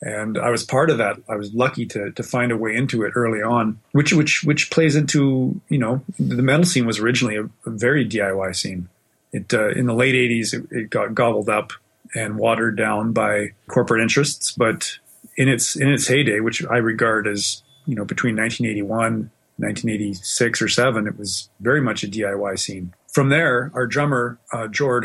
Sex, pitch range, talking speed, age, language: male, 110-130 Hz, 195 wpm, 30-49, English